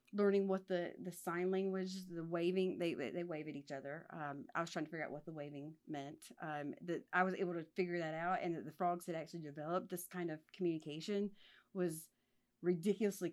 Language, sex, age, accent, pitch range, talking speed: English, female, 30-49, American, 155-185 Hz, 210 wpm